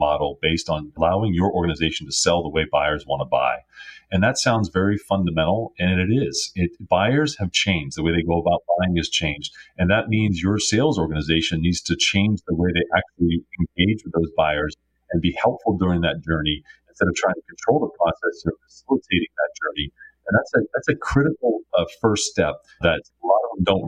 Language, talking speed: English, 200 wpm